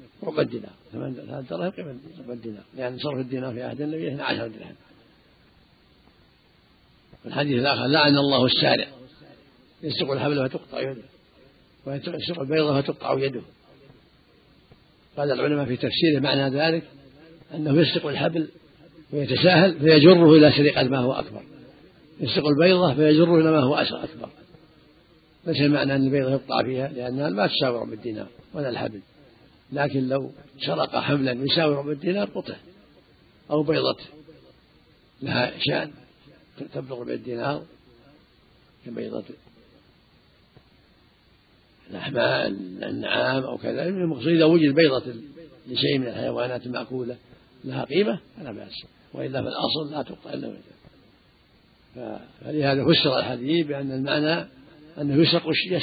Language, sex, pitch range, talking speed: Arabic, male, 135-160 Hz, 110 wpm